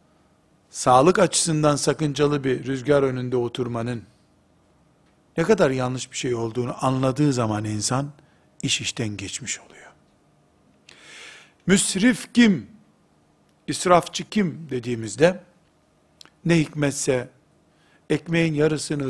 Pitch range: 120-155 Hz